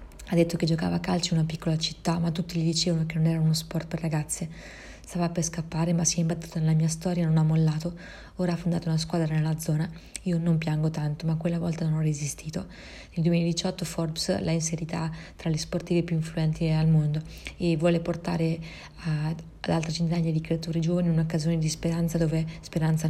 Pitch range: 160-170 Hz